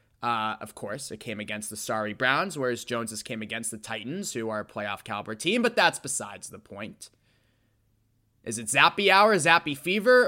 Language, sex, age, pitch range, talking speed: English, male, 20-39, 125-195 Hz, 185 wpm